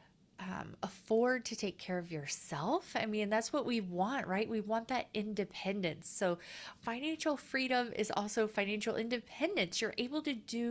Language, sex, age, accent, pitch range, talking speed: English, female, 30-49, American, 200-245 Hz, 160 wpm